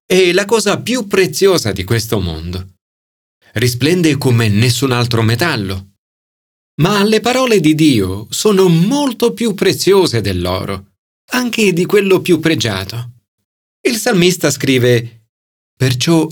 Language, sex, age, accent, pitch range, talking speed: Italian, male, 40-59, native, 100-150 Hz, 120 wpm